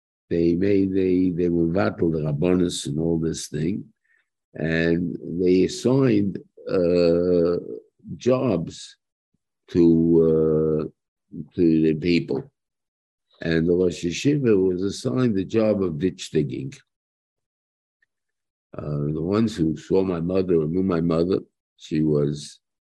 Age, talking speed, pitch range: 50-69, 120 wpm, 80-95 Hz